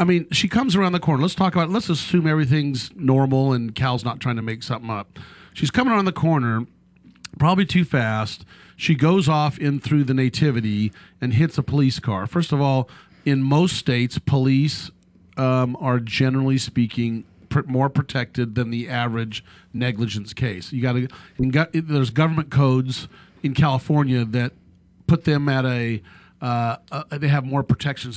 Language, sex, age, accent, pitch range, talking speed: English, male, 40-59, American, 120-155 Hz, 170 wpm